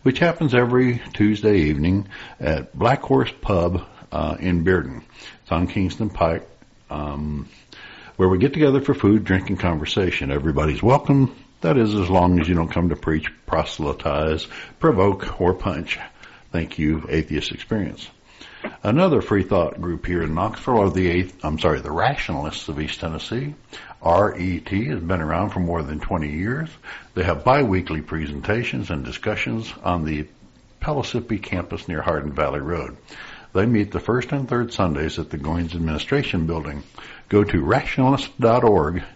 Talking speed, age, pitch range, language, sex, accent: 155 wpm, 60-79, 80-110 Hz, English, male, American